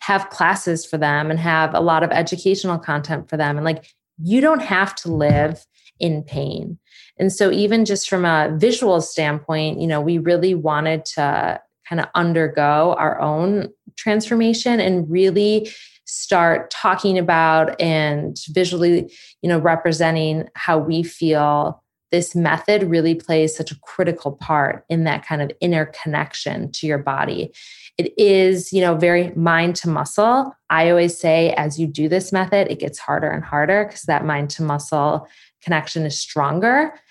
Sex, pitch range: female, 155-185 Hz